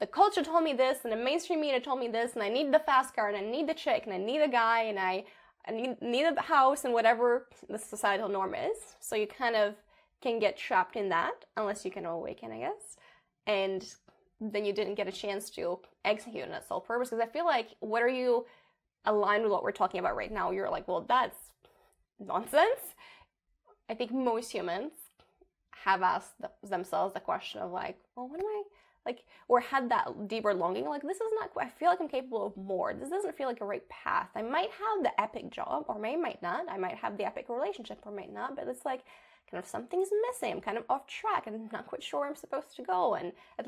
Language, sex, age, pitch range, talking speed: English, female, 20-39, 210-335 Hz, 235 wpm